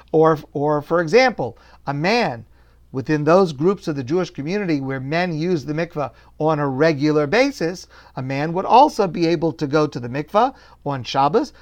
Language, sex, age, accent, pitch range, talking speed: English, male, 50-69, American, 140-190 Hz, 180 wpm